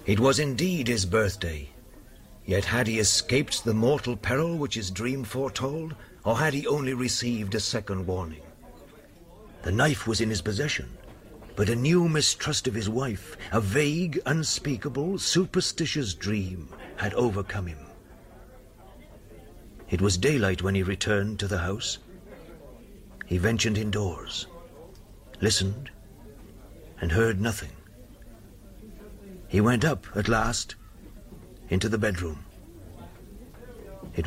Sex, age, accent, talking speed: male, 50-69, British, 125 wpm